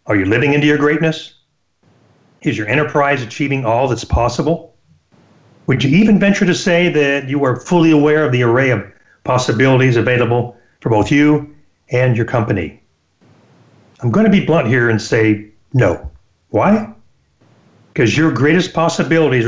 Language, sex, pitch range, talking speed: English, male, 115-160 Hz, 150 wpm